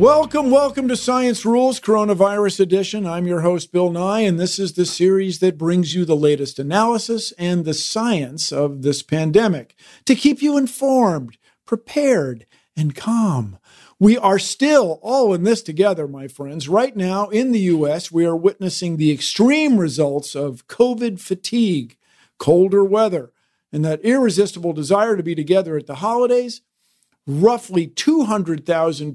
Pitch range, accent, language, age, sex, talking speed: 155-215 Hz, American, English, 50-69, male, 150 wpm